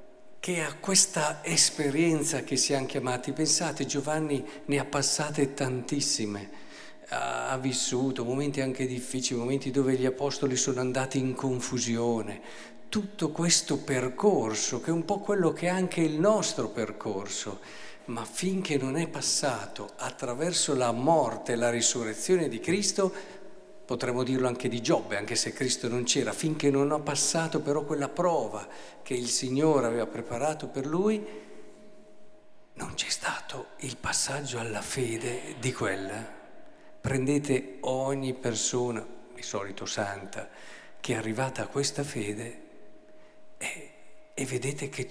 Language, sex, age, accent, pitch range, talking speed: Italian, male, 50-69, native, 120-155 Hz, 135 wpm